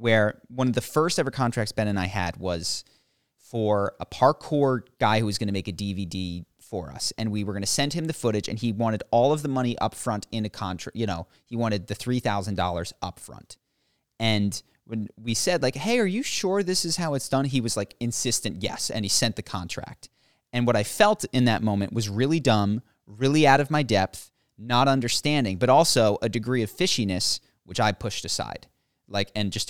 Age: 30-49